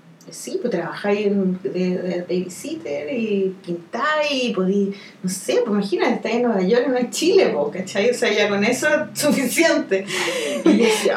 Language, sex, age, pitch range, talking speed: Spanish, female, 30-49, 180-235 Hz, 175 wpm